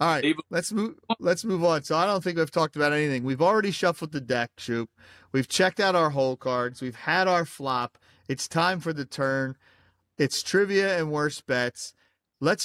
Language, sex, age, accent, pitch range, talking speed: English, male, 40-59, American, 125-165 Hz, 200 wpm